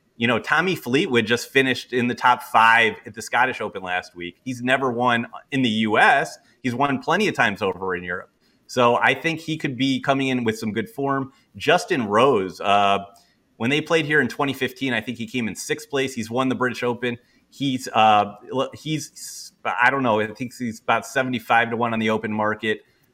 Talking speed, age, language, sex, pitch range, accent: 205 wpm, 30-49, English, male, 110-135 Hz, American